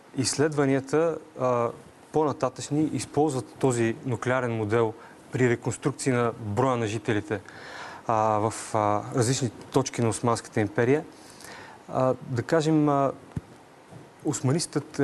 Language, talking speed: Bulgarian, 85 wpm